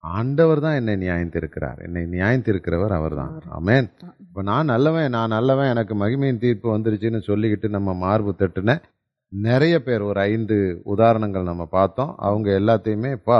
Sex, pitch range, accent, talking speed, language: male, 95-135 Hz, native, 140 wpm, Tamil